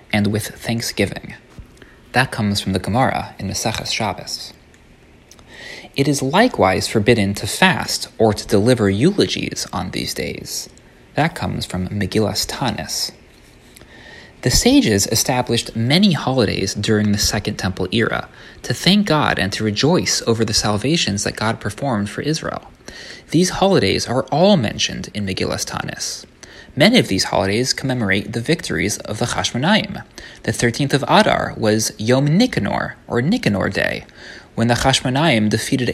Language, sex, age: English, male, 30-49